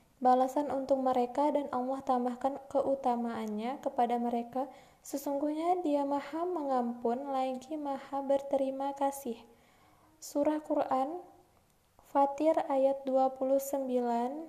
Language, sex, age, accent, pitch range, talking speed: Indonesian, female, 20-39, native, 260-285 Hz, 90 wpm